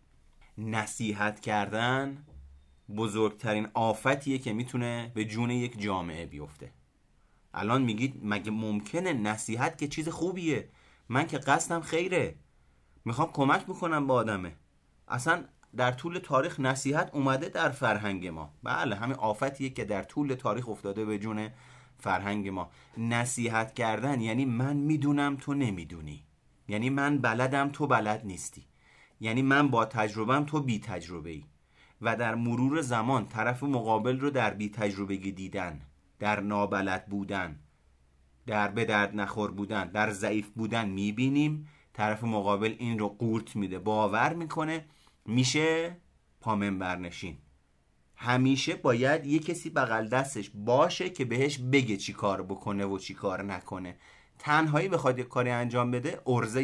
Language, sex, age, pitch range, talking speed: Persian, male, 30-49, 100-135 Hz, 135 wpm